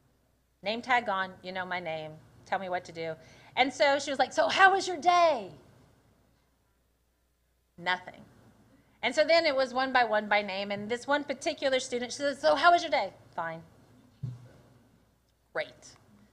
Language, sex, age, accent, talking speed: English, female, 30-49, American, 175 wpm